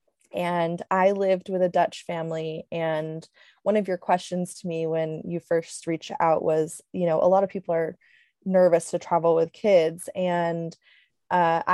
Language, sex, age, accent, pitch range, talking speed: English, female, 20-39, American, 160-185 Hz, 175 wpm